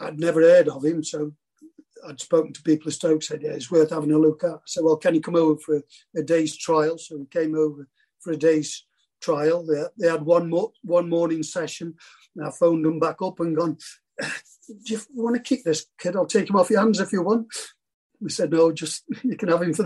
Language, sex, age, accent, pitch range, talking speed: English, male, 50-69, British, 155-185 Hz, 240 wpm